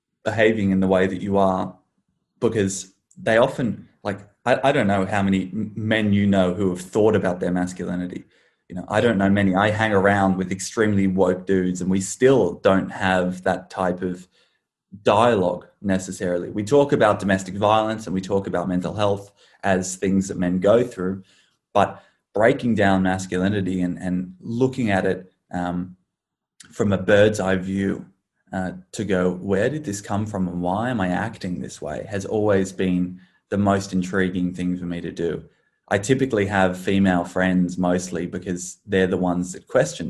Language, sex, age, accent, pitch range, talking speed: English, male, 20-39, Australian, 90-105 Hz, 180 wpm